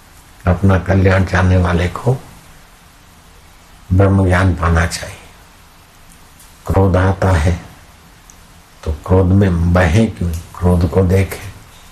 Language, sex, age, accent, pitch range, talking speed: Hindi, male, 60-79, native, 85-95 Hz, 95 wpm